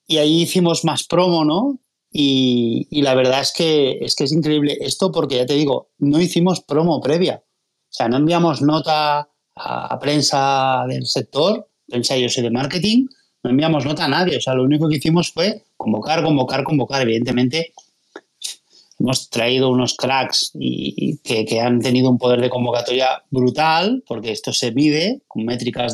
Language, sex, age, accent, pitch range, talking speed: Spanish, male, 30-49, Spanish, 125-155 Hz, 180 wpm